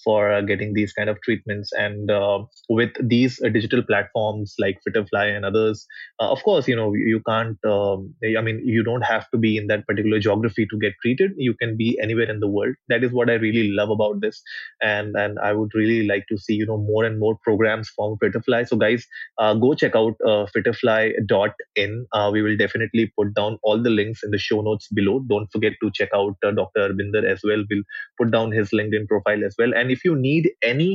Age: 20-39